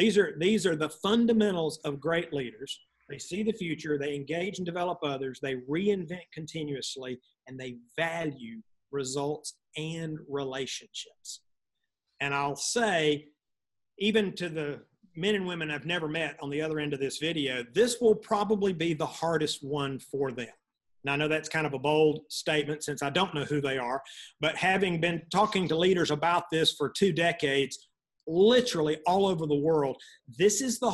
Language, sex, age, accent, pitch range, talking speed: English, male, 50-69, American, 140-180 Hz, 175 wpm